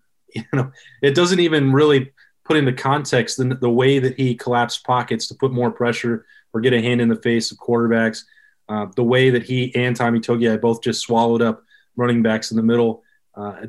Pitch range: 115-130 Hz